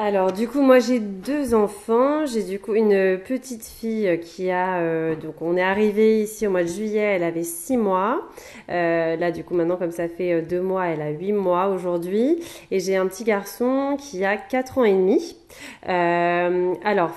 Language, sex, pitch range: French, female, 175-220 Hz